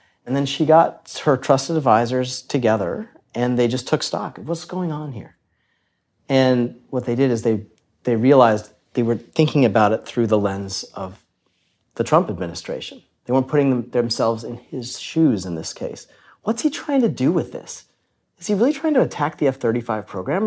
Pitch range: 110-150 Hz